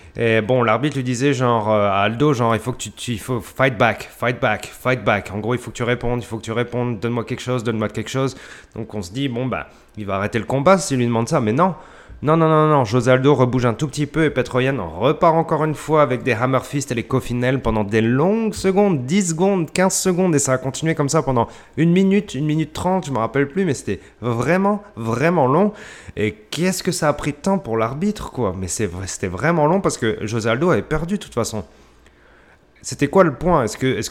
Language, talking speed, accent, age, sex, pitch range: French, 260 wpm, French, 30-49, male, 105-140 Hz